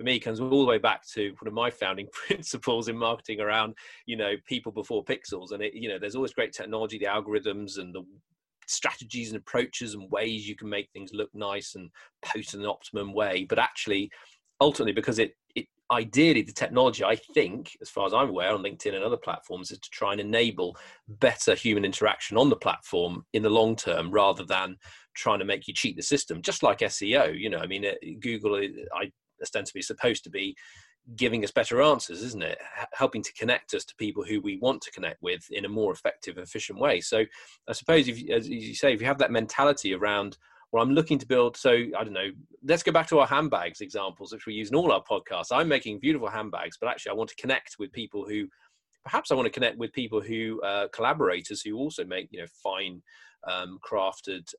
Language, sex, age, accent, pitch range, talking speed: English, male, 30-49, British, 100-130 Hz, 220 wpm